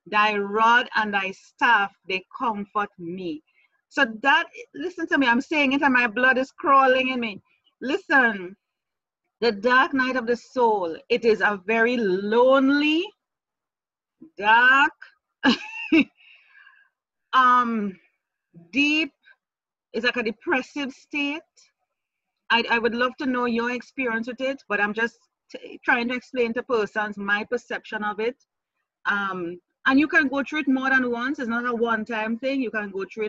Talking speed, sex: 155 wpm, female